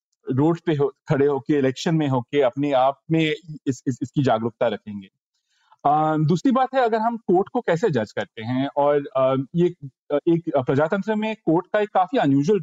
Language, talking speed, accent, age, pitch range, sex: Hindi, 185 wpm, native, 40-59, 140-190 Hz, male